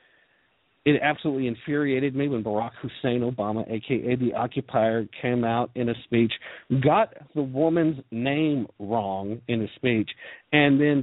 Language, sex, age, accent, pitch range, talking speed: English, male, 50-69, American, 105-140 Hz, 140 wpm